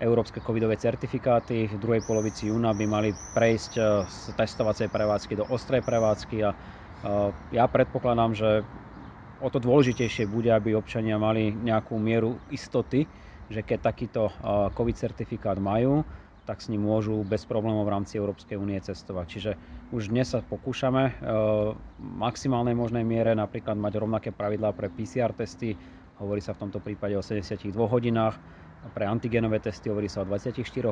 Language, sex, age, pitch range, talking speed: Slovak, male, 30-49, 105-115 Hz, 150 wpm